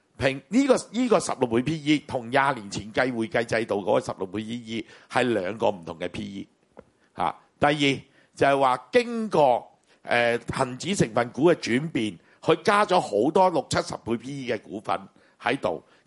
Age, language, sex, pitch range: 50-69, Chinese, male, 120-175 Hz